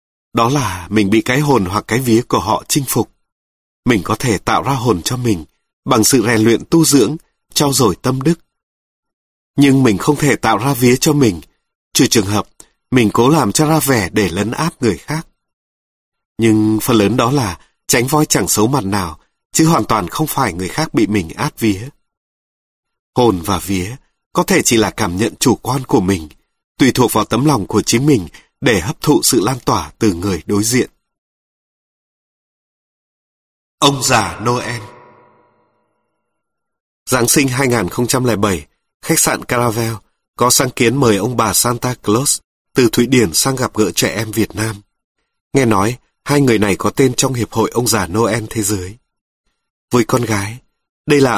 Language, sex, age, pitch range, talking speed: Vietnamese, male, 30-49, 105-135 Hz, 180 wpm